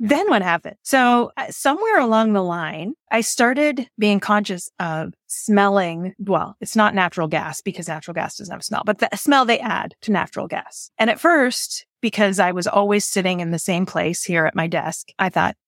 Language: English